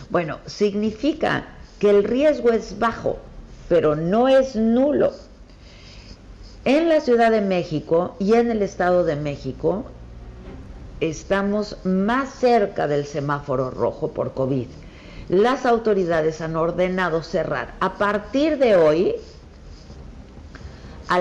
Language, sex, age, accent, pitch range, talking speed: Spanish, female, 50-69, Mexican, 135-205 Hz, 115 wpm